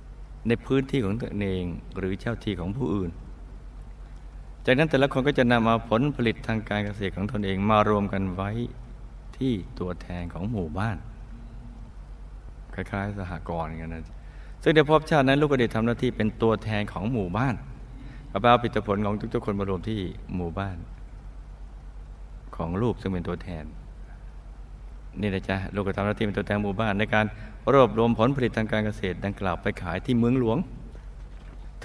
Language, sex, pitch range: Thai, male, 90-120 Hz